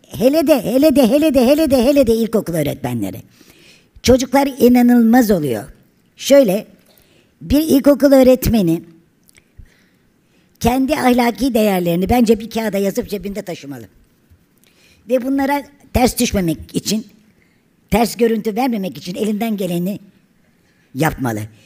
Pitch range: 170-240 Hz